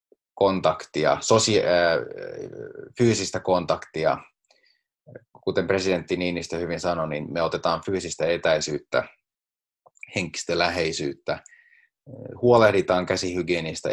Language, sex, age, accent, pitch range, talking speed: Finnish, male, 30-49, native, 90-125 Hz, 80 wpm